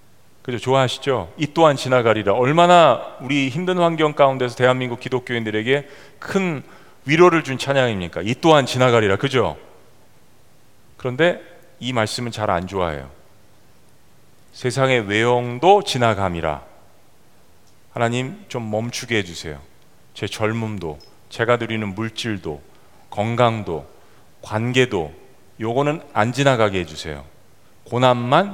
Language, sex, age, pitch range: Korean, male, 40-59, 110-160 Hz